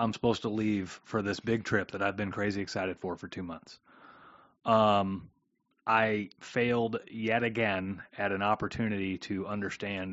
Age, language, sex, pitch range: 30-49, English, male, 100-115 Hz